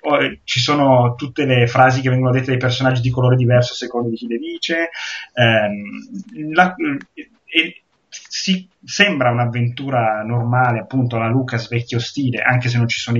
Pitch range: 120-165 Hz